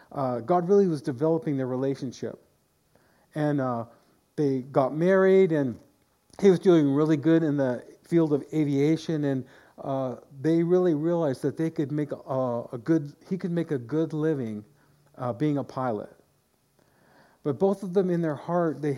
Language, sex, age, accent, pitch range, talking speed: English, male, 50-69, American, 130-160 Hz, 170 wpm